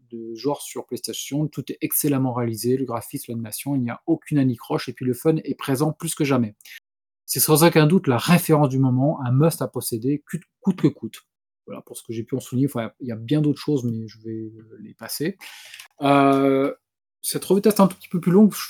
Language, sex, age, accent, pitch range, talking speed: French, male, 20-39, French, 125-165 Hz, 230 wpm